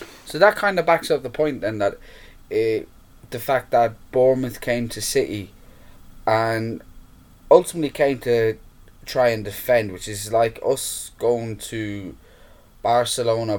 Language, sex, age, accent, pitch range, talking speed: English, male, 10-29, British, 105-120 Hz, 140 wpm